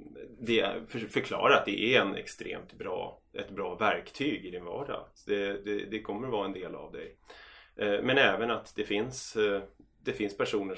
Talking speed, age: 185 wpm, 30-49